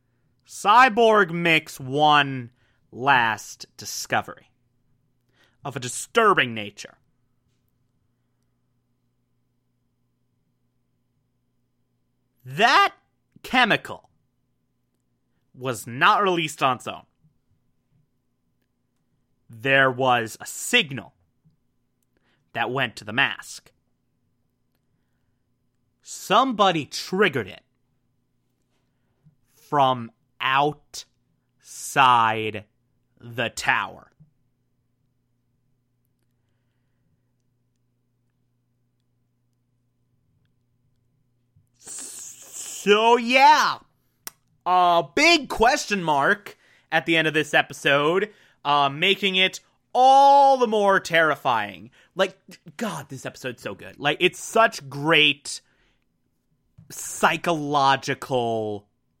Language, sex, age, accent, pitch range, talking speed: English, male, 30-49, American, 120-155 Hz, 65 wpm